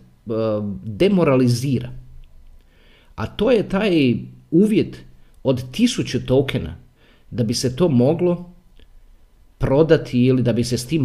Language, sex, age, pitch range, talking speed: Croatian, male, 50-69, 95-155 Hz, 115 wpm